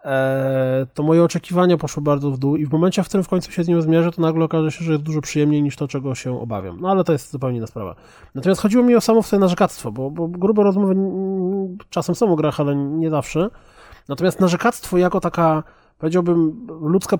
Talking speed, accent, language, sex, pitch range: 215 wpm, native, Polish, male, 145-190 Hz